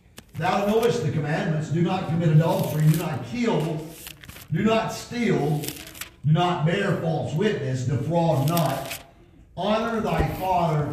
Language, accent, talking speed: English, American, 130 wpm